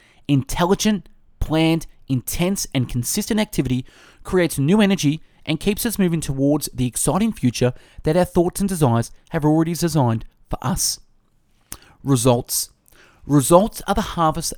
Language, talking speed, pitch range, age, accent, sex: English, 130 wpm, 135-180 Hz, 30-49, Australian, male